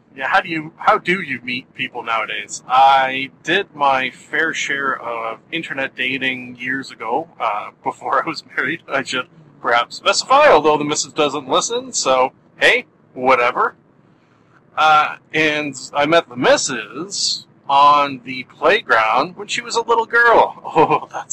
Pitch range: 130-190 Hz